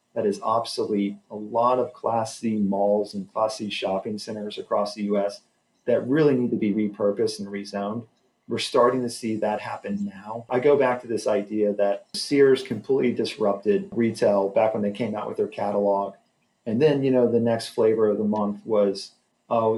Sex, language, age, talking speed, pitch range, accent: male, English, 40-59, 190 wpm, 105-125 Hz, American